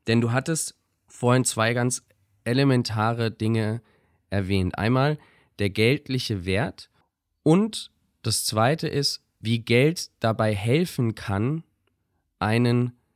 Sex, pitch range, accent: male, 105-135 Hz, German